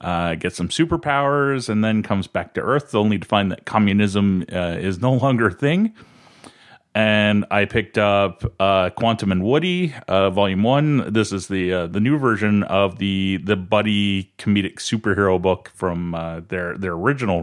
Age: 30-49